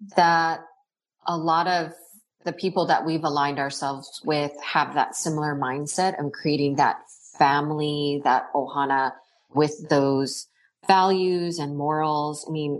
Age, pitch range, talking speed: 30-49, 140-165 Hz, 130 wpm